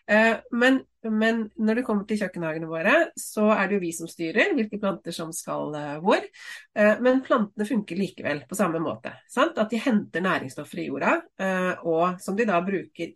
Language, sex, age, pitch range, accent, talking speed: English, female, 30-49, 170-235 Hz, Swedish, 165 wpm